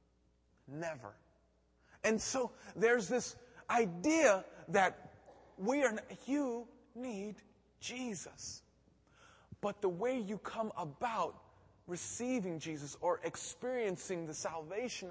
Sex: male